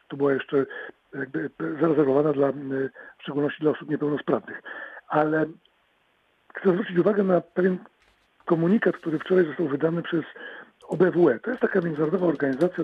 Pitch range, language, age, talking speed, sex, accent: 145-190 Hz, Polish, 50-69, 135 wpm, male, native